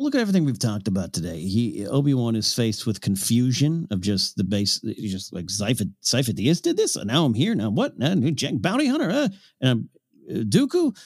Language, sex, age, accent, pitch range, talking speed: English, male, 50-69, American, 100-135 Hz, 245 wpm